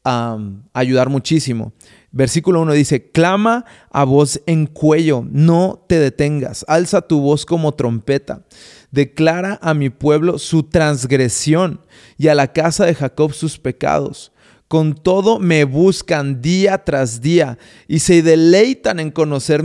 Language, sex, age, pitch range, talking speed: Spanish, male, 30-49, 150-195 Hz, 135 wpm